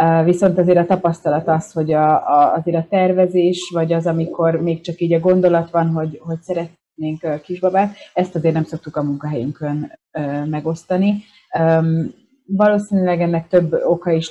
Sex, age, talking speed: female, 30-49, 145 wpm